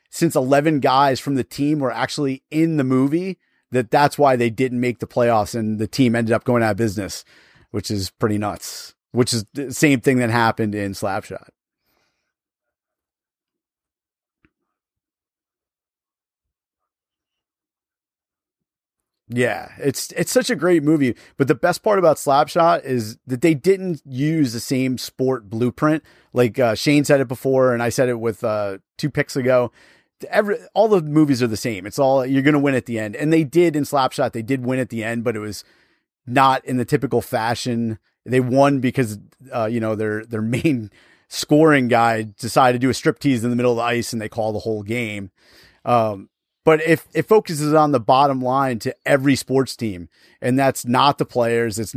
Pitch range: 115-140 Hz